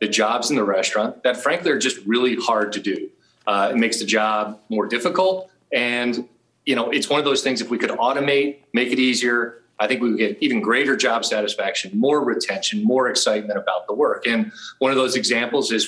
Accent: American